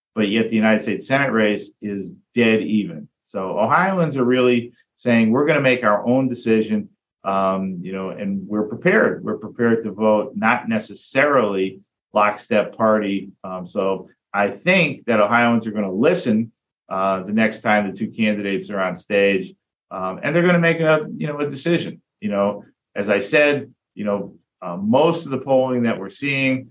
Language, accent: English, American